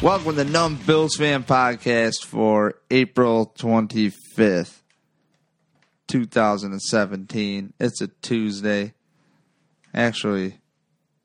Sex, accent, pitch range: male, American, 110-135 Hz